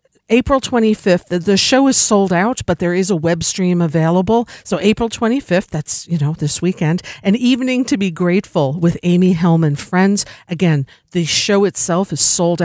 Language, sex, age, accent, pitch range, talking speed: English, female, 50-69, American, 155-195 Hz, 180 wpm